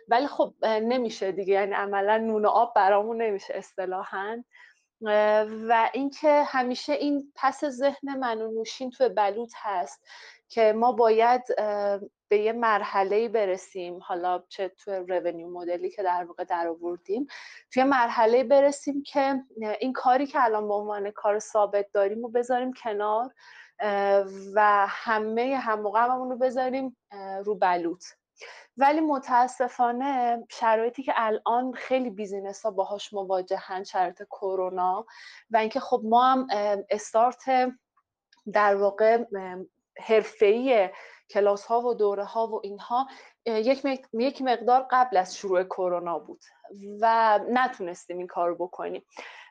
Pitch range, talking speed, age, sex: 200-255 Hz, 125 wpm, 30-49, female